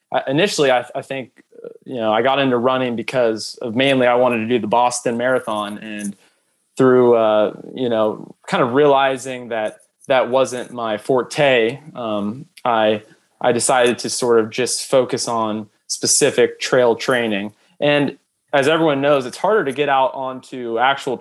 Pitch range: 115-140 Hz